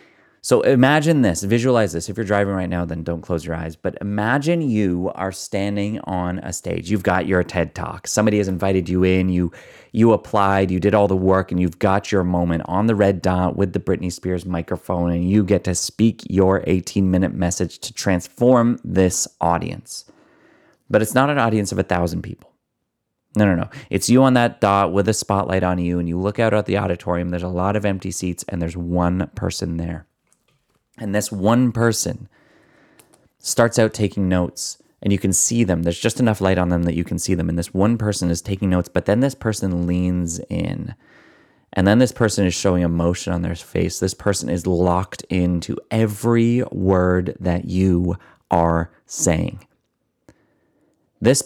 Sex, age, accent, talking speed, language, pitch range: male, 30-49, American, 195 wpm, English, 90-105 Hz